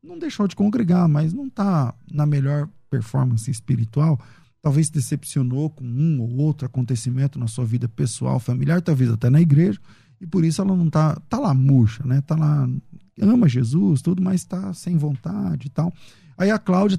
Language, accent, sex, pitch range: Portuguese, Brazilian, male, 130-170 Hz